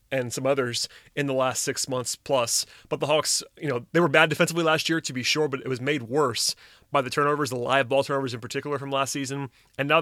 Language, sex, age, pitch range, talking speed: English, male, 30-49, 130-155 Hz, 250 wpm